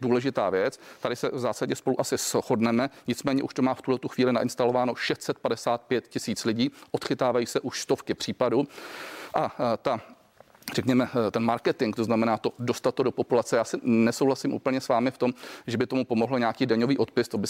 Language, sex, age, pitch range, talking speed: Czech, male, 40-59, 120-135 Hz, 185 wpm